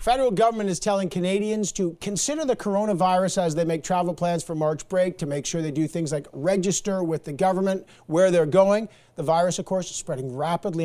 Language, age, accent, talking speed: English, 50-69, American, 210 wpm